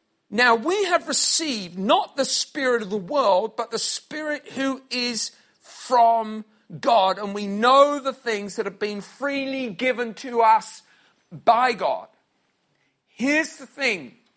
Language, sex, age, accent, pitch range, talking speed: English, male, 50-69, British, 210-270 Hz, 140 wpm